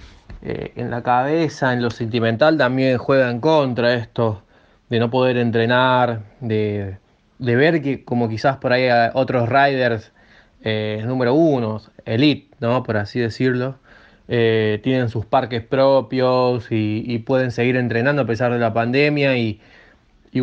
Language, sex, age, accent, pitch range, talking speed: Spanish, male, 20-39, Argentinian, 115-135 Hz, 145 wpm